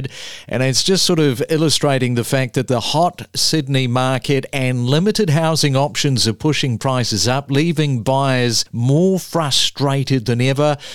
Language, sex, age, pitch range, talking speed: English, male, 50-69, 130-160 Hz, 150 wpm